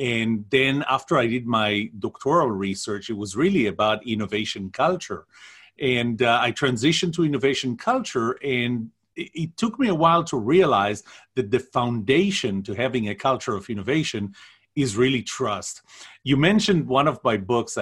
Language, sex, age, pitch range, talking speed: English, male, 40-59, 105-140 Hz, 160 wpm